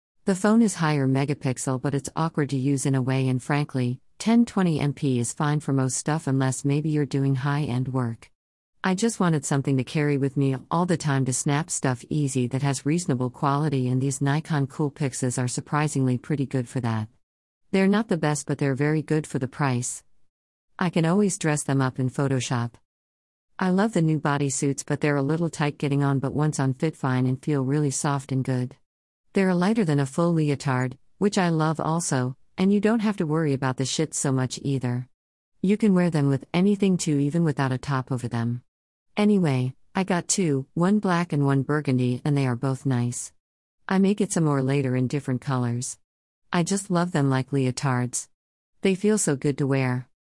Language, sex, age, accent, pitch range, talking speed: English, female, 50-69, American, 130-160 Hz, 200 wpm